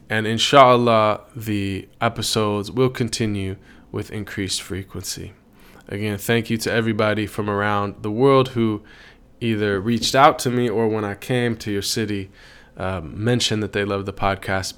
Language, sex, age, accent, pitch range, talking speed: English, male, 20-39, American, 100-115 Hz, 155 wpm